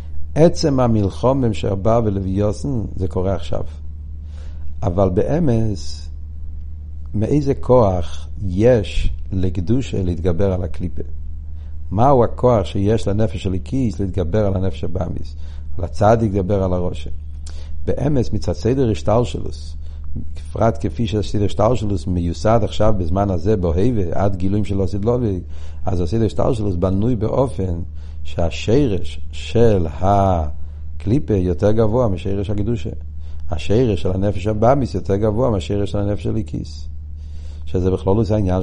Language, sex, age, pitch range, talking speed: Hebrew, male, 60-79, 75-110 Hz, 115 wpm